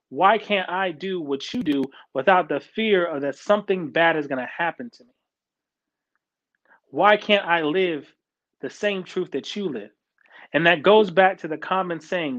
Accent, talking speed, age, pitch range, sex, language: American, 185 wpm, 30-49, 145-195 Hz, male, English